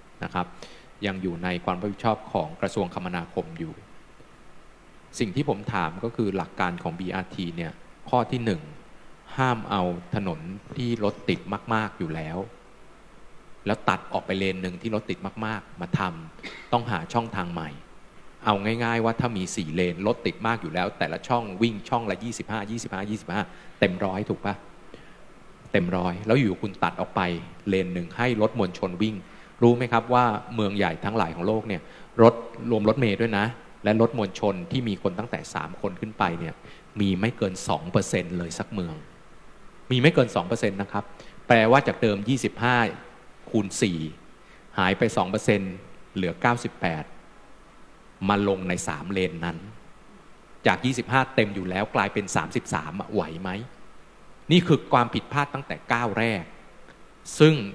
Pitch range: 95-115 Hz